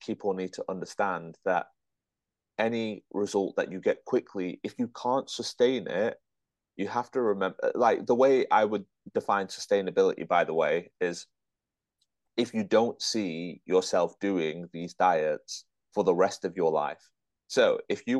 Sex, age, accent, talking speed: male, 30-49, British, 160 wpm